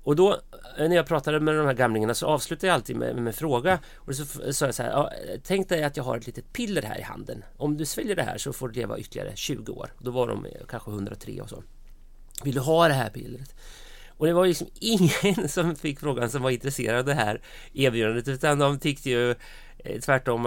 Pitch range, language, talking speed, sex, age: 115-135 Hz, English, 230 wpm, male, 30-49